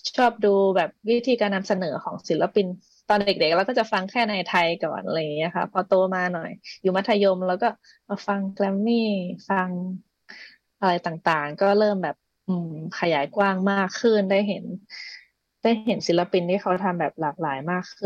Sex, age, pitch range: female, 20-39, 180-220 Hz